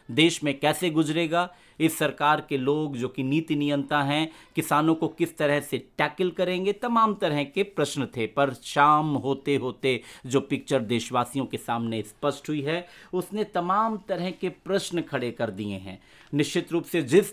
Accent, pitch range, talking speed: native, 140-175 Hz, 175 wpm